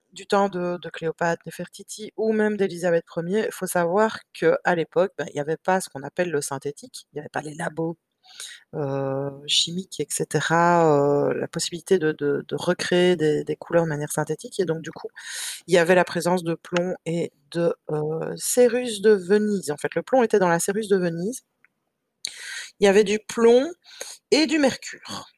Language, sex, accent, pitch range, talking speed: French, female, French, 165-225 Hz, 195 wpm